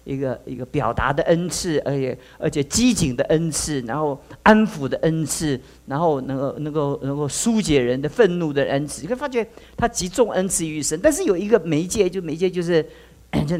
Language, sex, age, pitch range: Chinese, male, 50-69, 150-220 Hz